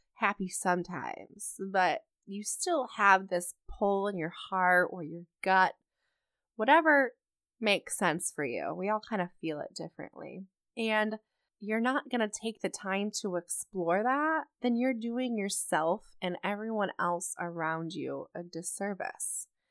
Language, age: English, 20-39